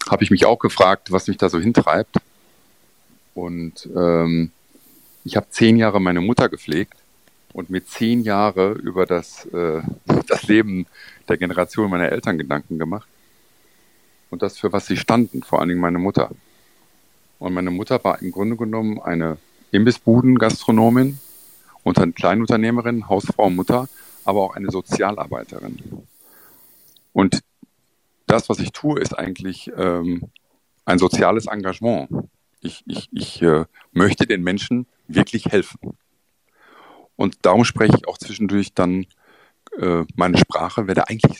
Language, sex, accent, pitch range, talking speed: German, male, German, 90-115 Hz, 140 wpm